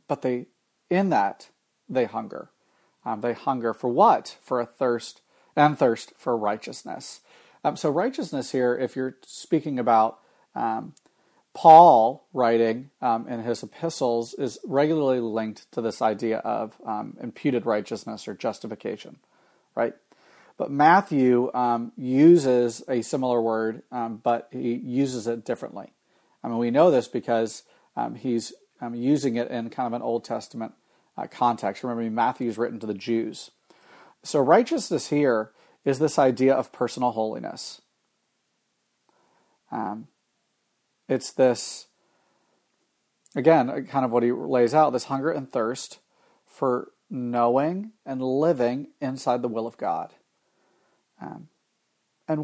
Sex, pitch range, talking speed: male, 120-140 Hz, 135 wpm